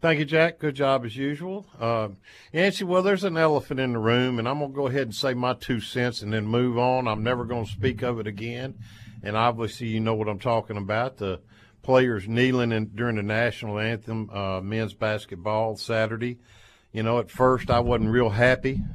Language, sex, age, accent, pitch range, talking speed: English, male, 50-69, American, 105-135 Hz, 210 wpm